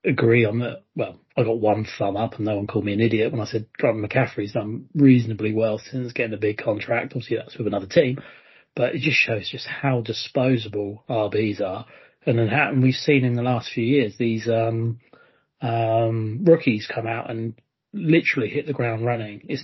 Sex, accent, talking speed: male, British, 205 wpm